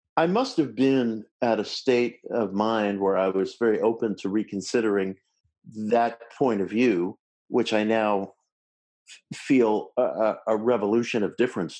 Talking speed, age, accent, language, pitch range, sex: 145 wpm, 50-69, American, English, 105-130 Hz, male